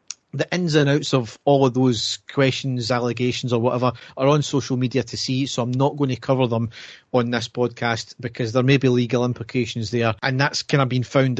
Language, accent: English, British